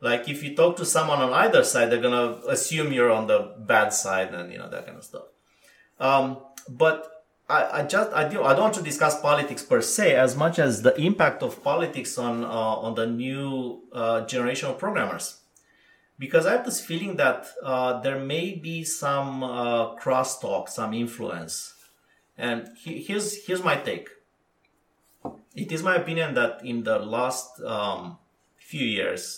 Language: English